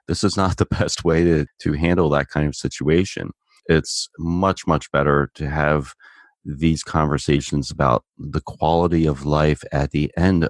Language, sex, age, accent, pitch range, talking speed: English, male, 30-49, American, 75-90 Hz, 165 wpm